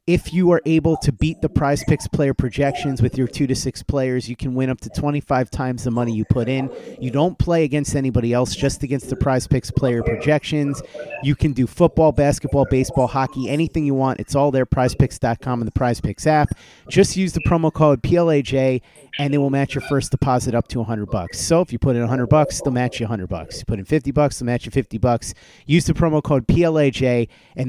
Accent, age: American, 30-49